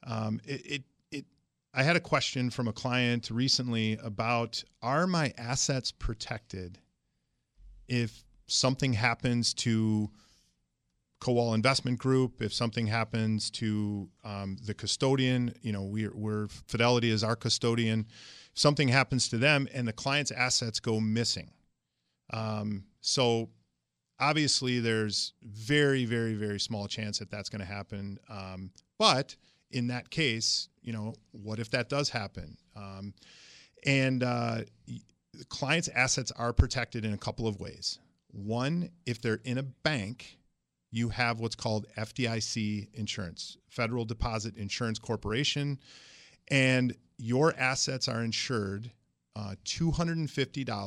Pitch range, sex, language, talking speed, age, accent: 105-130 Hz, male, English, 130 wpm, 40-59, American